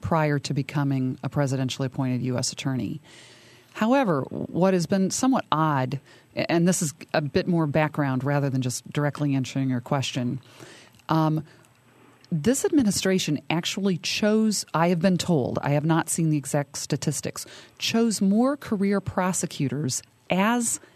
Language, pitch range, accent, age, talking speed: English, 145-185 Hz, American, 40-59, 140 wpm